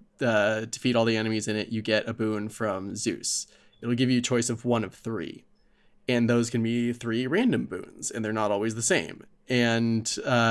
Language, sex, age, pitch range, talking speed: English, male, 20-39, 110-125 Hz, 210 wpm